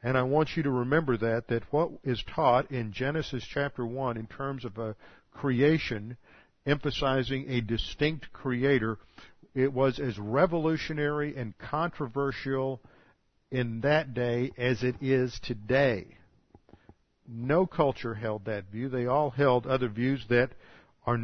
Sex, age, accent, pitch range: male, 50-69, American, 115-140 Hz